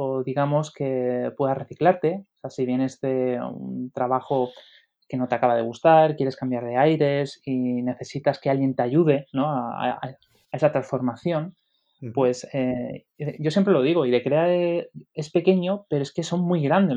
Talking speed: 185 wpm